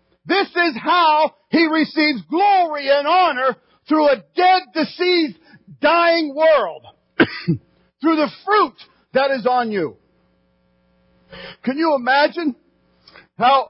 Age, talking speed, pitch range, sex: 50-69, 110 wpm, 235-320 Hz, male